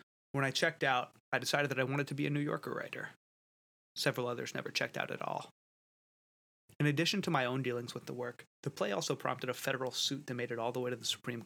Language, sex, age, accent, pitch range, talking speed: English, male, 30-49, American, 115-145 Hz, 245 wpm